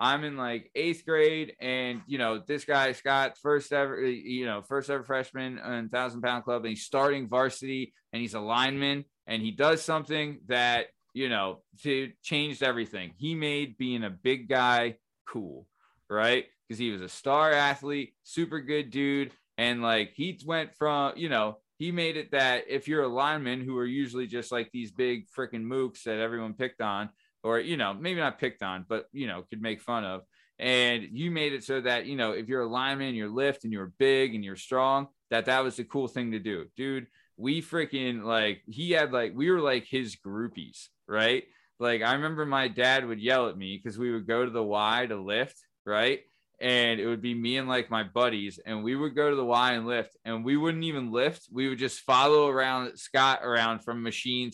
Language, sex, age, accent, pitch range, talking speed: English, male, 20-39, American, 115-140 Hz, 210 wpm